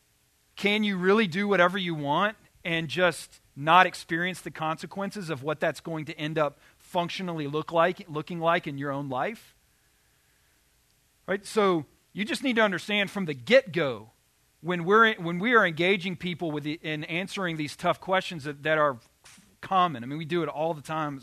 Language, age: English, 40-59